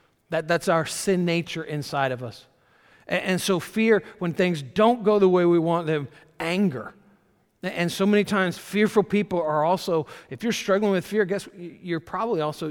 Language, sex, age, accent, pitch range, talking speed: English, male, 50-69, American, 140-175 Hz, 190 wpm